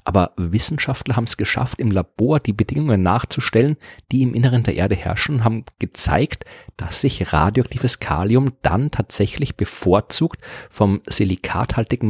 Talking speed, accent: 135 wpm, German